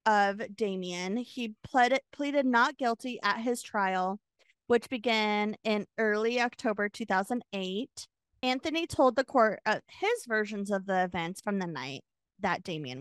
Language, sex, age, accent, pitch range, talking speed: English, female, 20-39, American, 200-250 Hz, 145 wpm